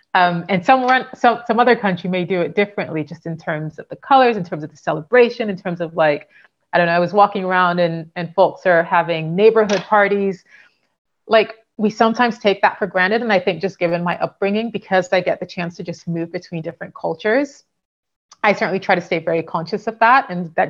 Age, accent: 30-49, American